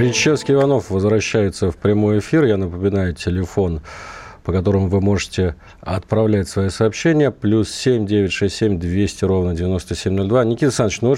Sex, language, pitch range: male, Russian, 95-120 Hz